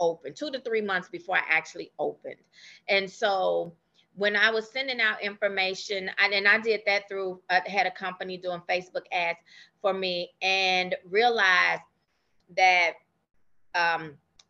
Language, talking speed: English, 150 wpm